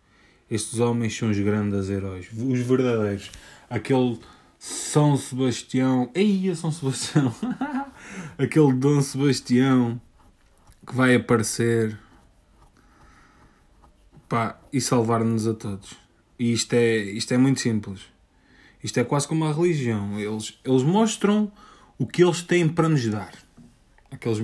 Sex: male